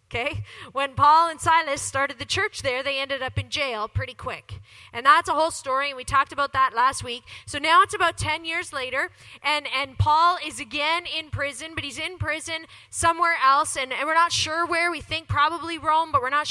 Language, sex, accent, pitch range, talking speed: English, female, American, 260-340 Hz, 220 wpm